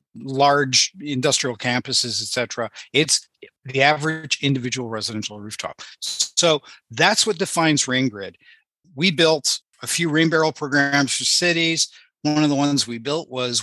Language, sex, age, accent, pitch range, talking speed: English, male, 50-69, American, 130-165 Hz, 145 wpm